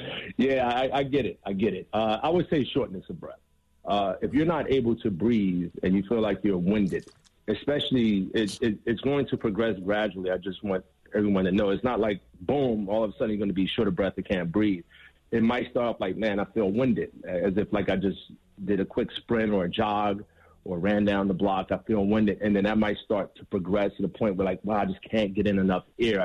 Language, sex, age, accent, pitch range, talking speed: English, male, 30-49, American, 95-110 Hz, 245 wpm